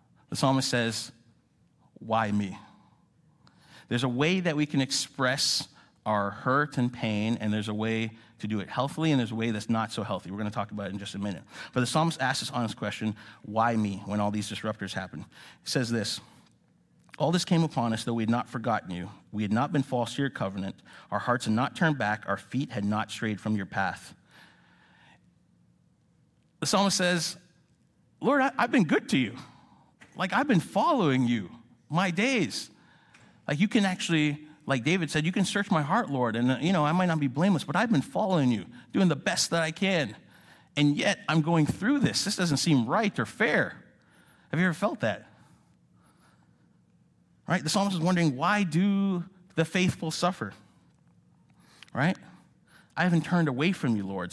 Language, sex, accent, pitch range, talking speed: English, male, American, 110-165 Hz, 195 wpm